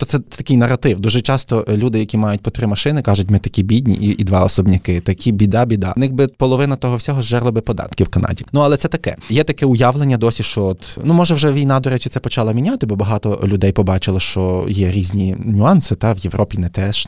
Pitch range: 100-135 Hz